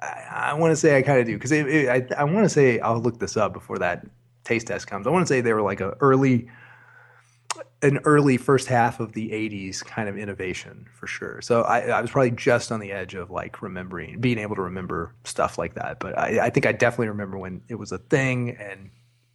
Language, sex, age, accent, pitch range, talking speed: English, male, 30-49, American, 115-140 Hz, 240 wpm